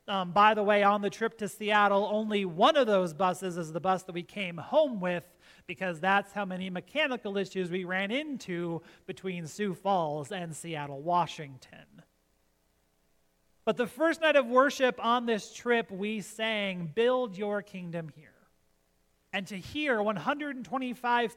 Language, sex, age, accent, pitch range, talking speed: English, male, 40-59, American, 150-245 Hz, 155 wpm